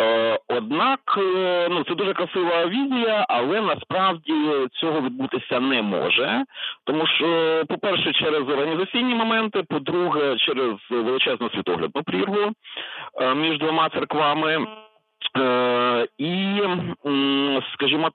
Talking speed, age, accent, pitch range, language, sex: 95 wpm, 40-59, native, 135-215 Hz, Ukrainian, male